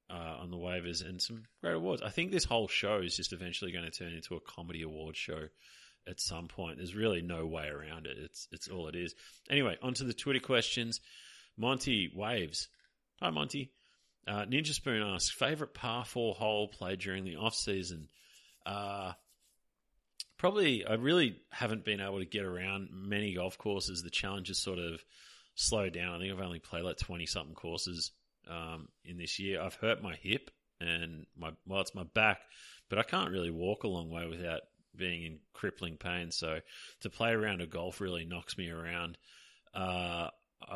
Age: 30-49